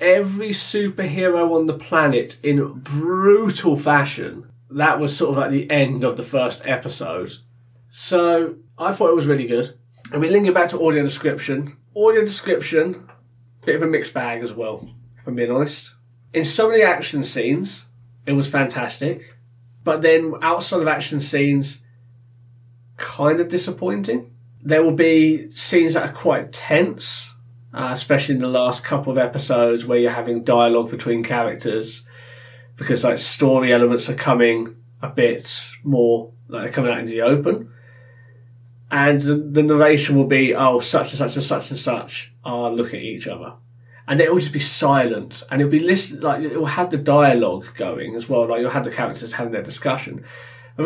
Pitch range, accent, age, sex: 120-155 Hz, British, 20-39, male